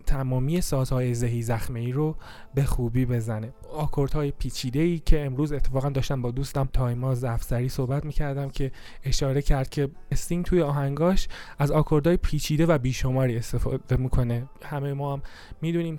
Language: Persian